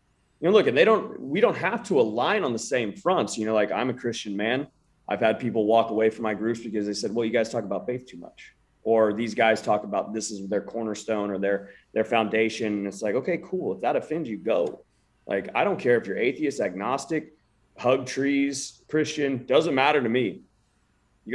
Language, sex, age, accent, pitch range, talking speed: English, male, 30-49, American, 100-125 Hz, 215 wpm